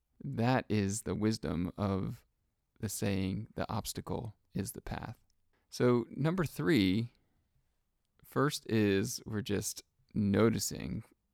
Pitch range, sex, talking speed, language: 95-120 Hz, male, 105 wpm, English